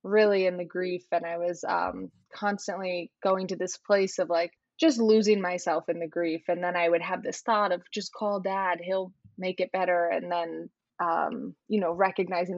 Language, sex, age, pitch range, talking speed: English, female, 20-39, 170-195 Hz, 200 wpm